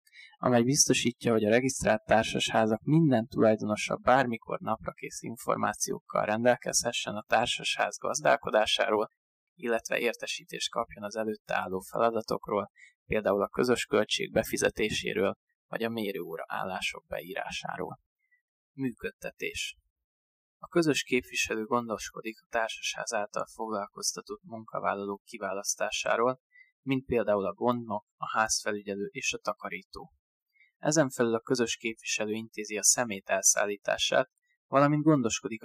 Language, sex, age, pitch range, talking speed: Hungarian, male, 20-39, 105-130 Hz, 105 wpm